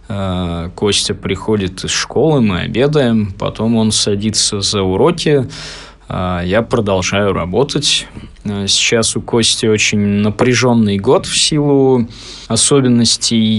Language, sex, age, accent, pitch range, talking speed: Russian, male, 20-39, native, 100-120 Hz, 100 wpm